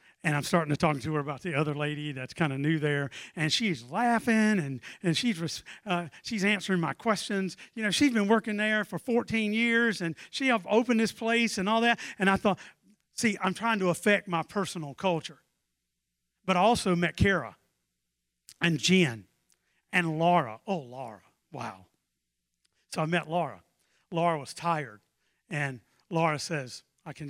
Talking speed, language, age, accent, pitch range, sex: 175 wpm, English, 50-69, American, 125-180 Hz, male